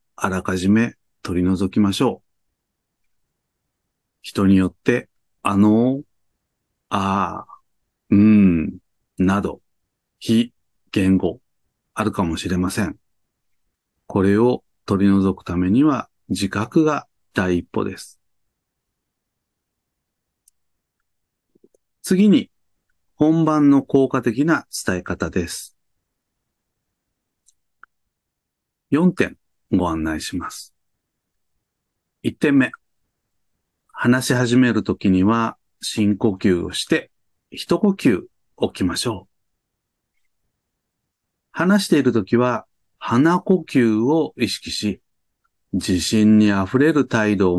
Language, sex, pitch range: Japanese, male, 95-140 Hz